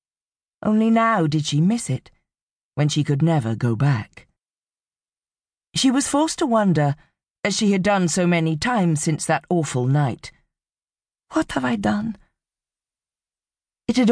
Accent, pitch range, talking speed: British, 145-205 Hz, 145 wpm